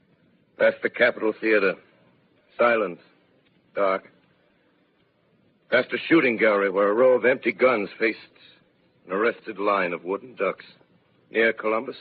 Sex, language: male, English